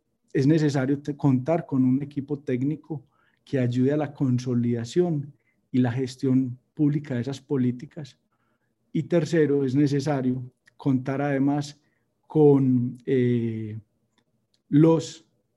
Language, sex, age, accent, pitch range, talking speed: Spanish, male, 40-59, Colombian, 125-150 Hz, 110 wpm